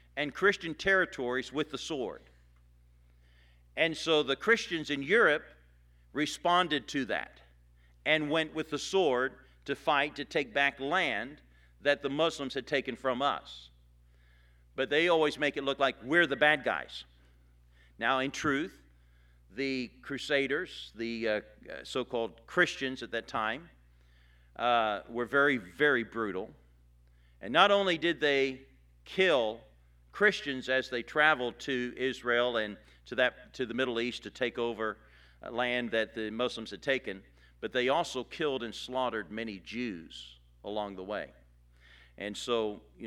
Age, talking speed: 50-69, 145 wpm